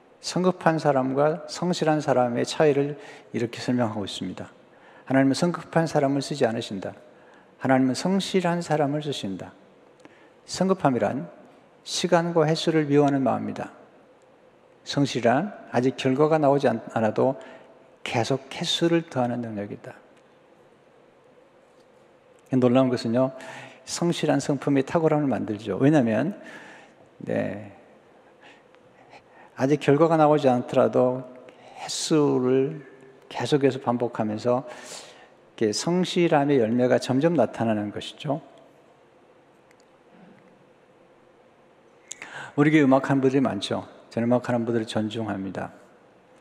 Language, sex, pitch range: Korean, male, 115-150 Hz